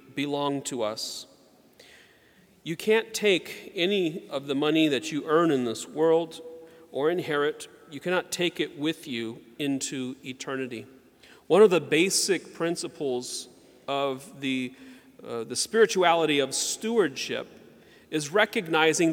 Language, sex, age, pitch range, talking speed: English, male, 40-59, 140-175 Hz, 120 wpm